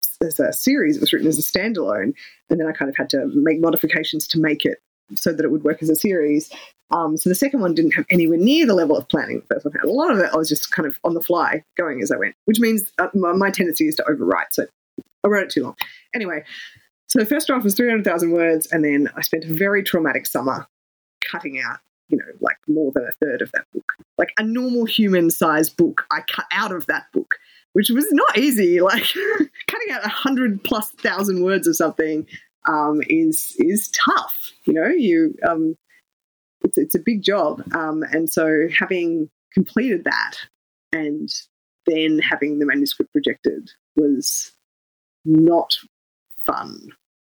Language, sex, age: English, female, 20-39